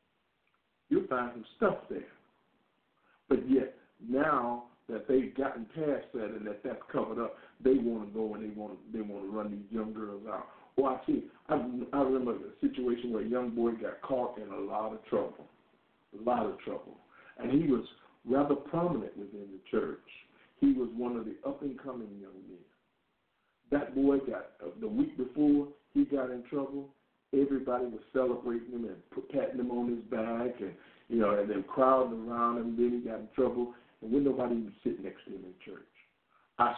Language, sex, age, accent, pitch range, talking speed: English, male, 50-69, American, 110-135 Hz, 190 wpm